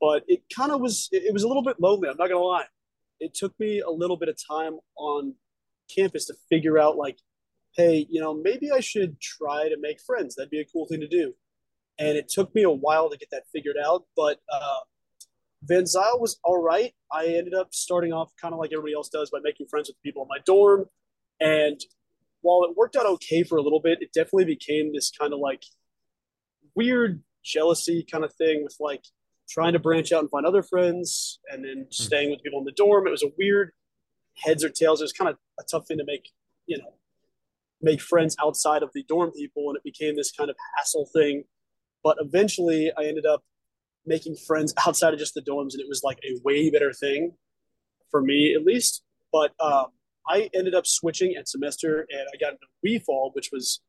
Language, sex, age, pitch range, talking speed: English, male, 30-49, 150-190 Hz, 220 wpm